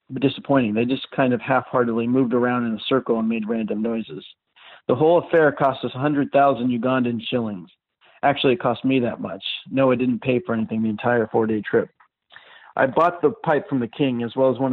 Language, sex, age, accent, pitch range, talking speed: English, male, 40-59, American, 115-135 Hz, 205 wpm